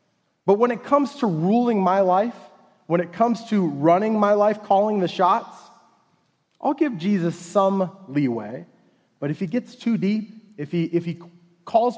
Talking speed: 170 wpm